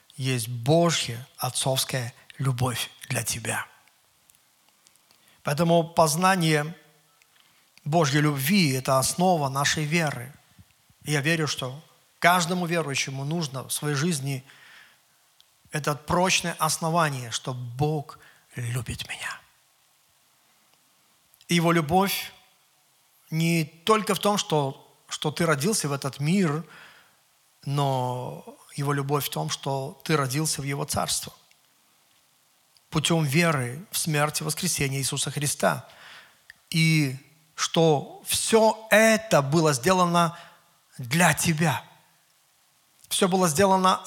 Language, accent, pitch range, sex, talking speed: Russian, native, 135-170 Hz, male, 100 wpm